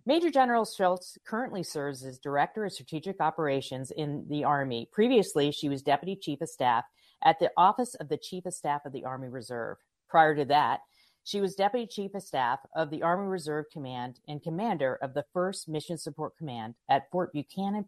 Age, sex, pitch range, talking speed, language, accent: 40-59, female, 145-185 Hz, 190 wpm, English, American